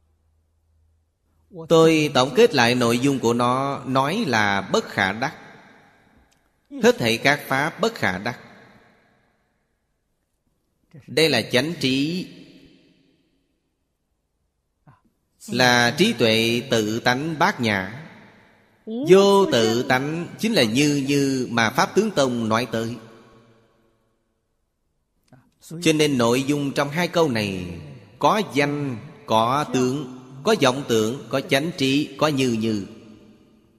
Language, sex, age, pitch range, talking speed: Vietnamese, male, 30-49, 110-155 Hz, 115 wpm